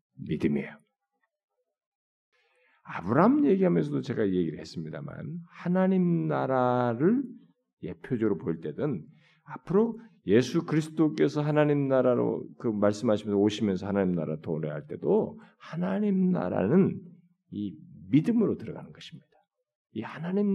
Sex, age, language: male, 50-69, Korean